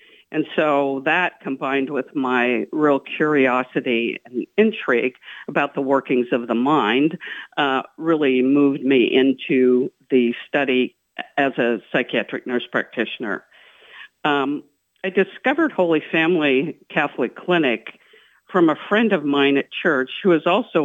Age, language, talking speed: 60-79, English, 130 wpm